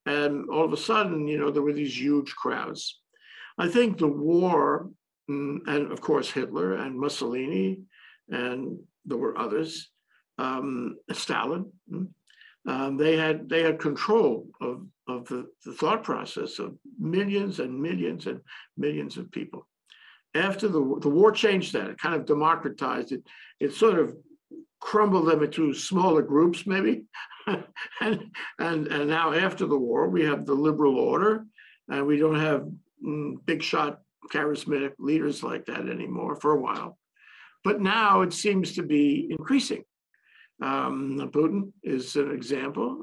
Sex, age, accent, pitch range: male, 60-79, American, 140-190 Hz